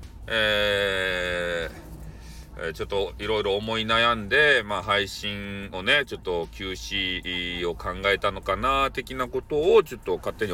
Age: 40-59